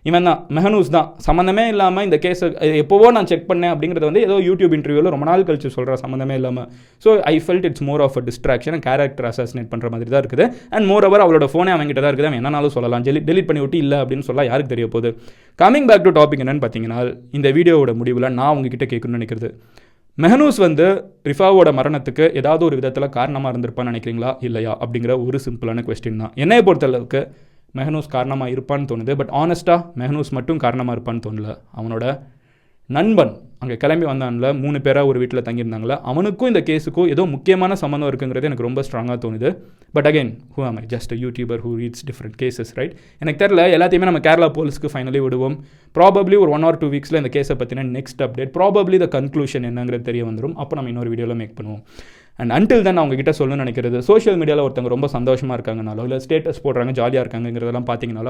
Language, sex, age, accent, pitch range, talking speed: Tamil, male, 20-39, native, 120-155 Hz, 185 wpm